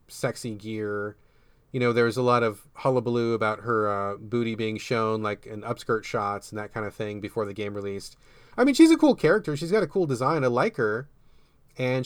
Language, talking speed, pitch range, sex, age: English, 215 wpm, 120-170 Hz, male, 30-49